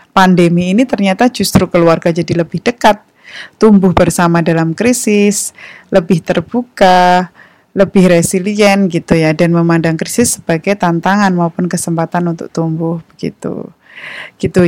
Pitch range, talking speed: 175-200 Hz, 120 wpm